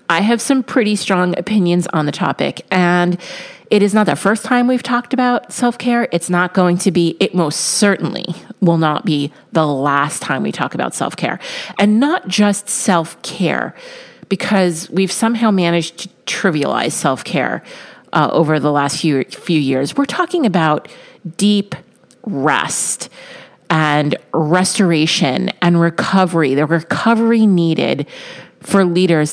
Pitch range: 160-205 Hz